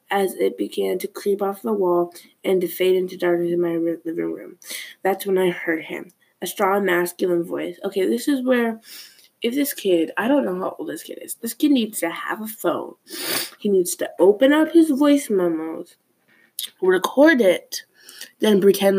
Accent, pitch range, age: American, 175-230 Hz, 20-39